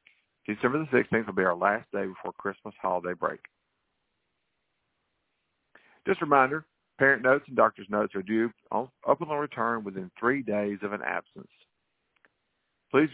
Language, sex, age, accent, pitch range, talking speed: English, male, 50-69, American, 105-130 Hz, 145 wpm